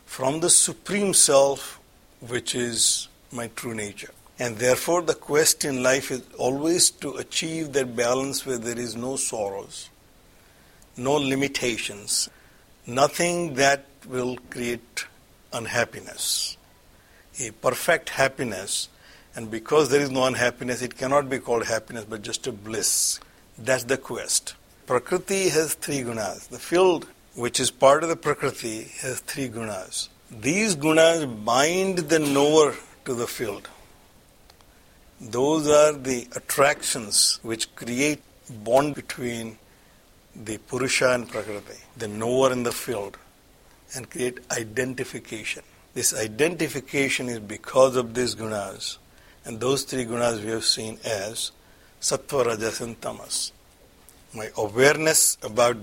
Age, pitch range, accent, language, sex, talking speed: 60-79, 115-145 Hz, Indian, English, male, 130 wpm